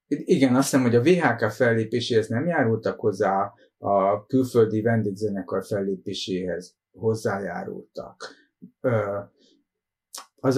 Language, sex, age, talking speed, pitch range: Hungarian, male, 60-79, 90 wpm, 100-125 Hz